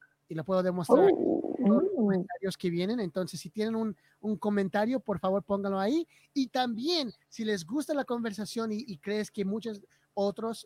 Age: 30-49